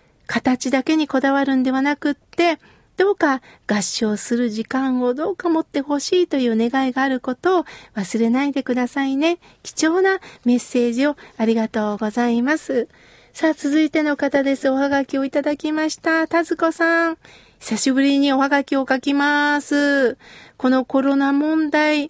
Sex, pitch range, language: female, 255-325 Hz, Japanese